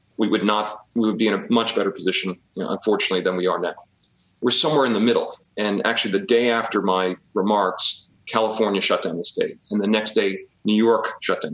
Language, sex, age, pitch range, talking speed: English, male, 40-59, 100-115 Hz, 225 wpm